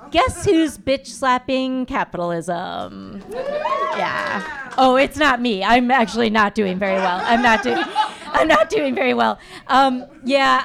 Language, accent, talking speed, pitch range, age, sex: English, American, 145 wpm, 205-265 Hz, 40-59, female